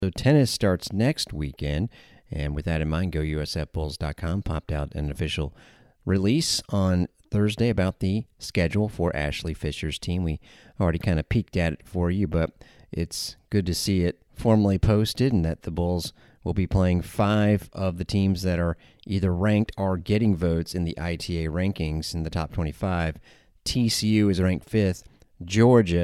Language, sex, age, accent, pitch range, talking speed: English, male, 30-49, American, 80-100 Hz, 170 wpm